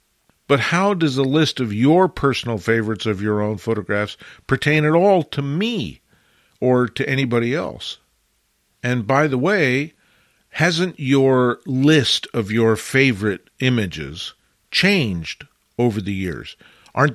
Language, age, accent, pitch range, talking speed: English, 50-69, American, 115-150 Hz, 135 wpm